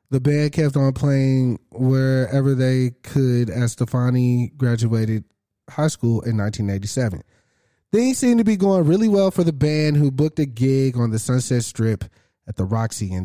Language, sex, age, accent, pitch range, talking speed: English, male, 20-39, American, 115-140 Hz, 175 wpm